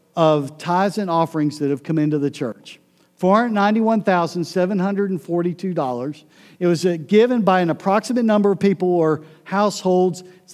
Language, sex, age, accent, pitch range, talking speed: English, male, 50-69, American, 165-205 Hz, 130 wpm